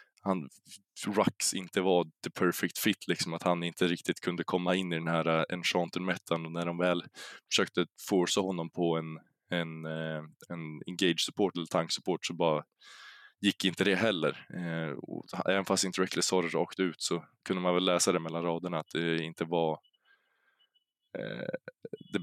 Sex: male